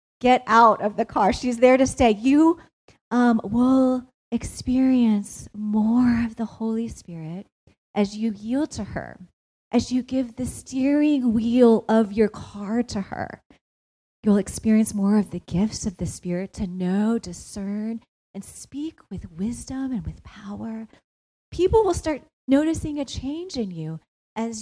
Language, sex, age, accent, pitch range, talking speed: English, female, 30-49, American, 210-260 Hz, 150 wpm